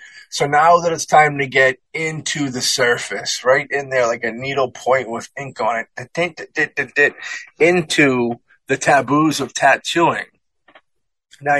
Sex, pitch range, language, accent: male, 125-150 Hz, English, American